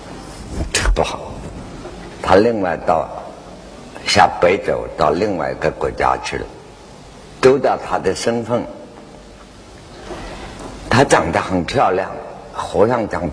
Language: Chinese